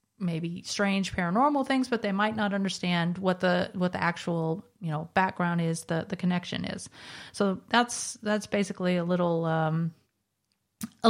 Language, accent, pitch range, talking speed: English, American, 180-225 Hz, 160 wpm